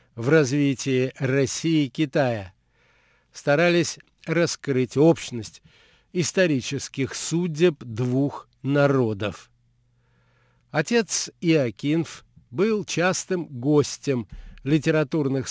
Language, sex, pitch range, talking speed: Russian, male, 125-165 Hz, 70 wpm